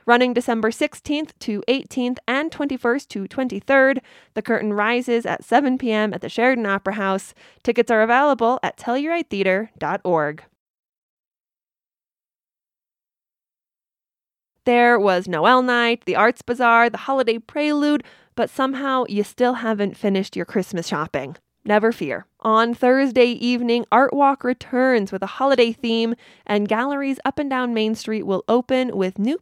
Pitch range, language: 200-255 Hz, English